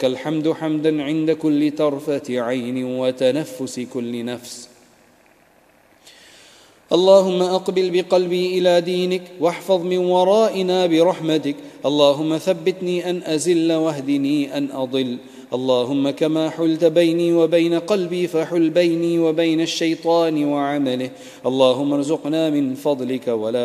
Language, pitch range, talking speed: English, 130-165 Hz, 105 wpm